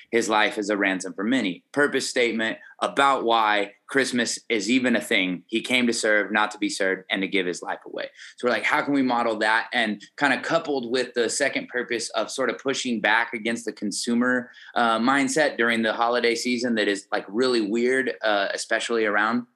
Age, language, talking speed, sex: 20-39, English, 210 wpm, male